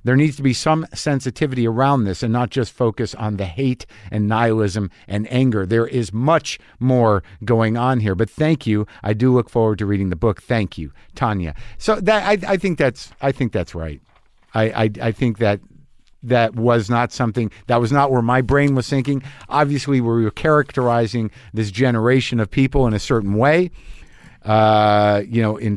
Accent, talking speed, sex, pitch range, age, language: American, 195 wpm, male, 100-130 Hz, 50-69, English